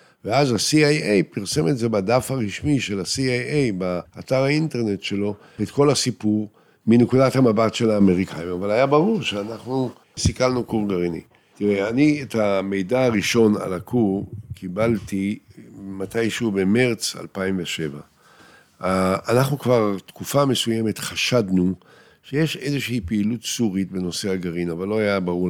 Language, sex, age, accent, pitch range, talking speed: Hebrew, male, 60-79, Italian, 95-125 Hz, 120 wpm